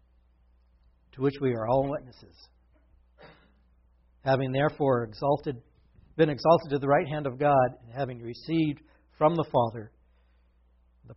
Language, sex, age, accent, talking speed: English, male, 60-79, American, 130 wpm